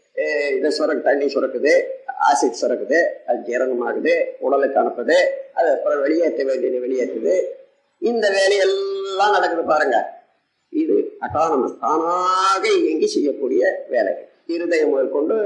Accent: native